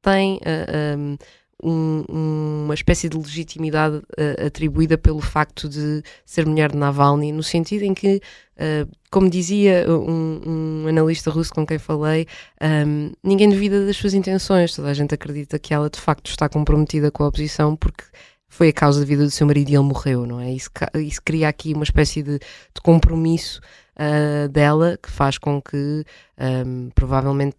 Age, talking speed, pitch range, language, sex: 20-39, 170 wpm, 135-155 Hz, Portuguese, female